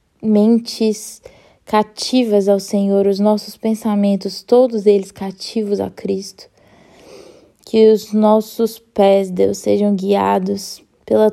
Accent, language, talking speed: Brazilian, Portuguese, 105 wpm